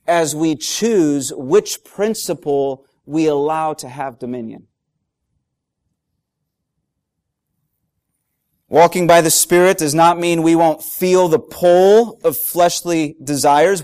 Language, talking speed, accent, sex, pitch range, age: English, 110 wpm, American, male, 150-190 Hz, 30-49